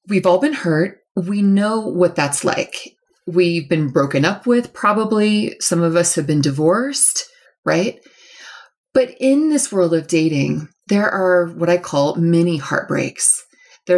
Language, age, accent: English, 30-49, American